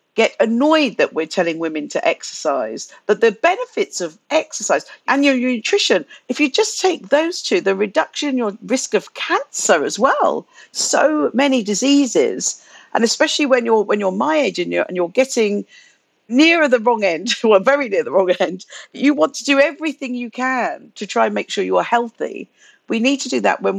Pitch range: 195-280 Hz